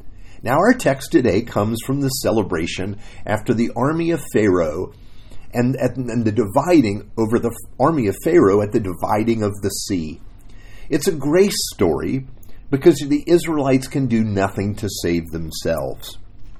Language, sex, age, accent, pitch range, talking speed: English, male, 50-69, American, 100-135 Hz, 150 wpm